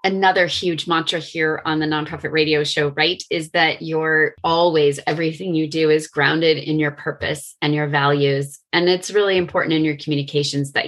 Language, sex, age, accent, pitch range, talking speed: English, female, 20-39, American, 140-165 Hz, 180 wpm